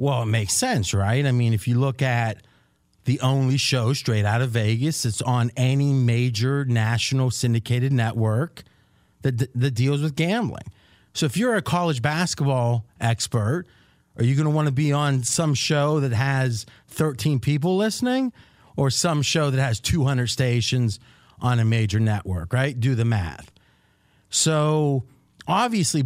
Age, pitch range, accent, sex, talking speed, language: 30-49, 115-155 Hz, American, male, 160 wpm, English